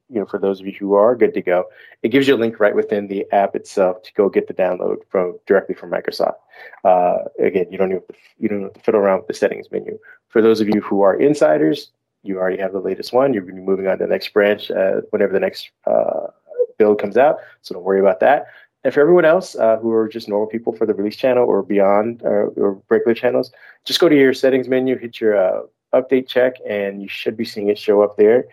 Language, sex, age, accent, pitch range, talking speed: English, male, 30-49, American, 100-125 Hz, 260 wpm